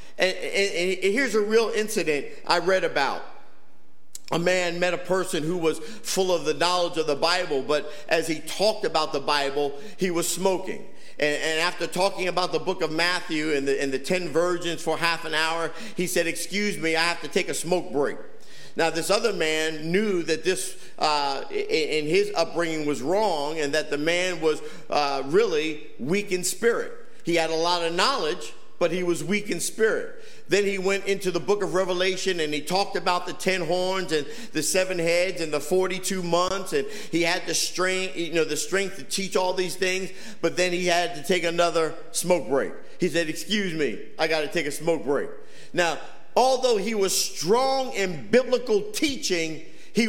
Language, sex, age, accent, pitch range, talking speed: English, male, 50-69, American, 165-195 Hz, 195 wpm